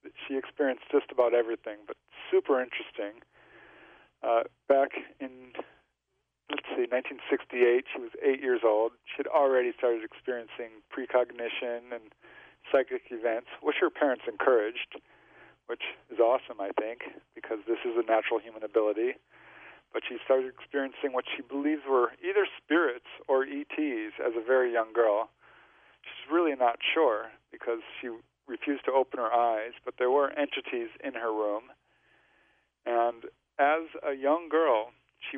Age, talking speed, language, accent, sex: 50-69, 145 wpm, English, American, male